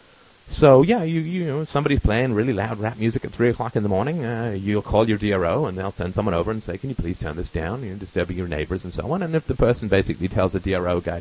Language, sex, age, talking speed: English, male, 30-49, 280 wpm